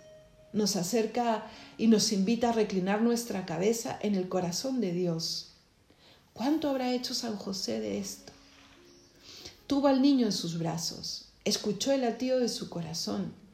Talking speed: 145 wpm